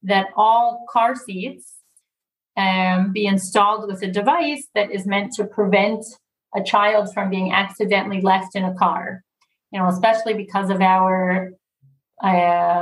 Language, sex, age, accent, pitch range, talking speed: English, female, 40-59, American, 185-210 Hz, 145 wpm